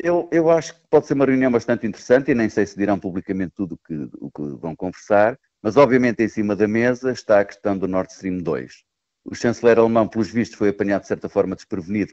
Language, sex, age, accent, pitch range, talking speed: Portuguese, male, 50-69, Portuguese, 100-140 Hz, 225 wpm